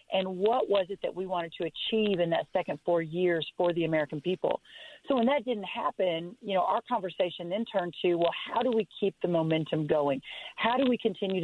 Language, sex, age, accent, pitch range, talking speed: English, female, 40-59, American, 175-220 Hz, 220 wpm